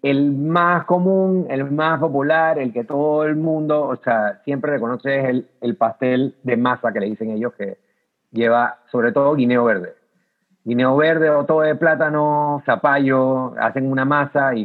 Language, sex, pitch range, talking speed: Spanish, male, 115-155 Hz, 170 wpm